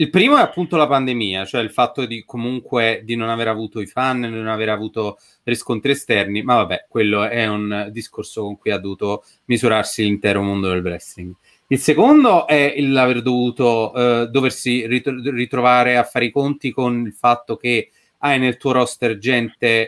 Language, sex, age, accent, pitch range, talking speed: Italian, male, 30-49, native, 105-130 Hz, 180 wpm